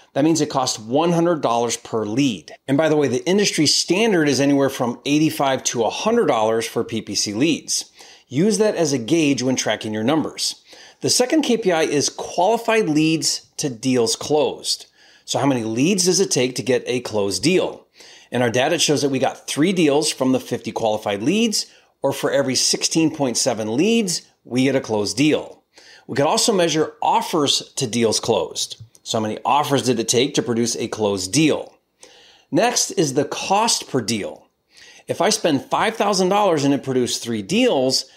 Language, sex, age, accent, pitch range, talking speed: English, male, 30-49, American, 120-160 Hz, 180 wpm